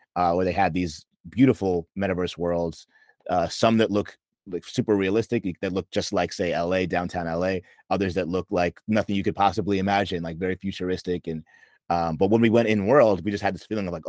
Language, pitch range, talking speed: English, 90-115 Hz, 215 wpm